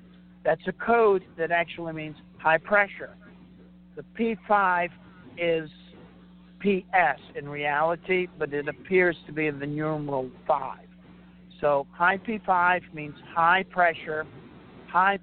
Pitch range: 150-185 Hz